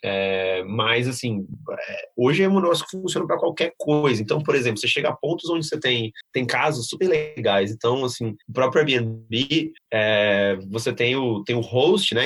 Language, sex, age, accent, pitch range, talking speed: Portuguese, male, 30-49, Brazilian, 115-150 Hz, 175 wpm